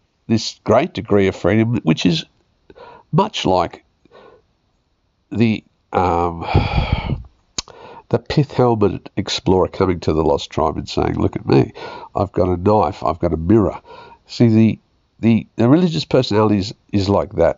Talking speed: 145 wpm